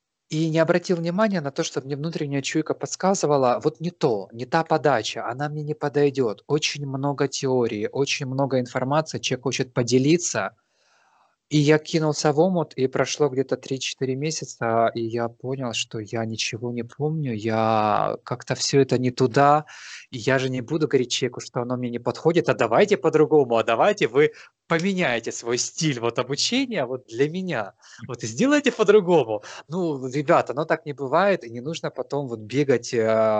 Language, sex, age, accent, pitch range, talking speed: Russian, male, 20-39, native, 120-160 Hz, 170 wpm